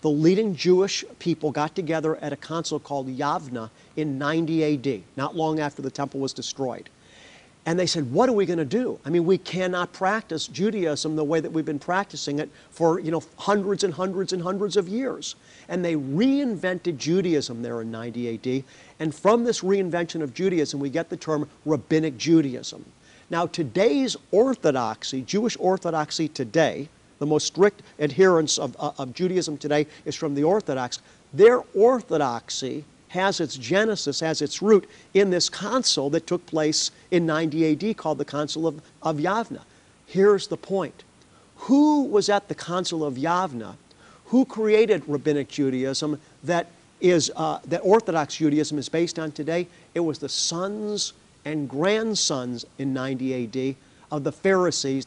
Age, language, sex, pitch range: 50-69, English, male, 145-185 Hz